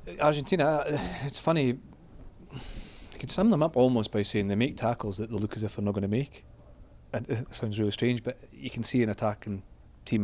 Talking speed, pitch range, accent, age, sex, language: 210 wpm, 100-120 Hz, British, 30-49, male, English